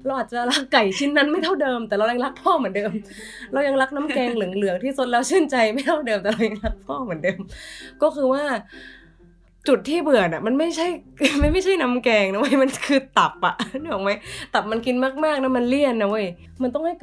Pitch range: 195-255 Hz